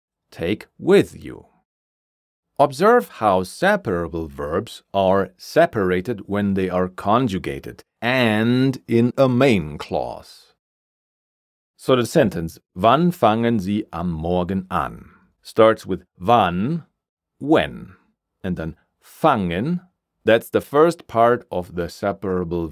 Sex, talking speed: male, 110 wpm